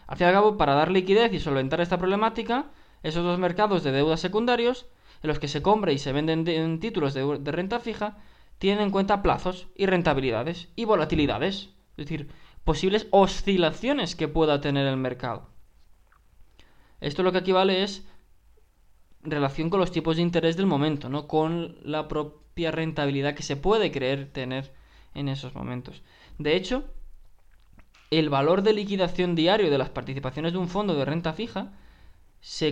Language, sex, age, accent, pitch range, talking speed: Spanish, male, 20-39, Spanish, 140-190 Hz, 170 wpm